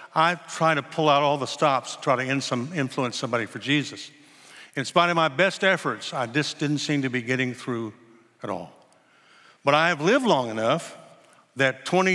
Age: 60-79